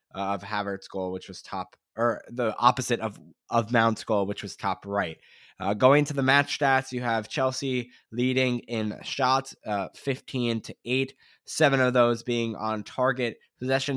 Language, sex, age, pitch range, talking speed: English, male, 20-39, 110-135 Hz, 170 wpm